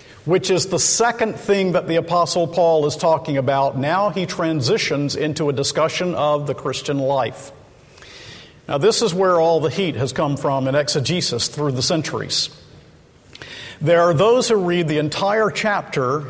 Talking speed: 165 wpm